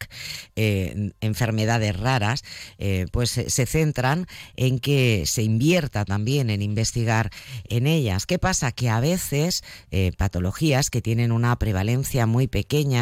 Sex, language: female, Spanish